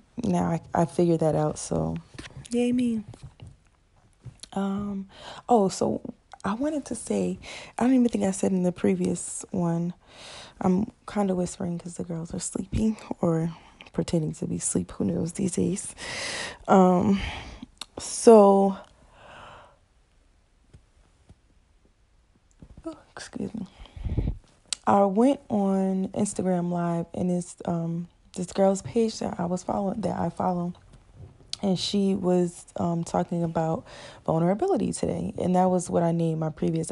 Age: 20-39